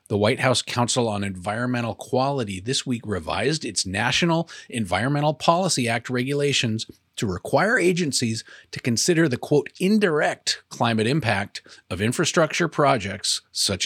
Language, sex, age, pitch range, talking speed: English, male, 30-49, 105-140 Hz, 130 wpm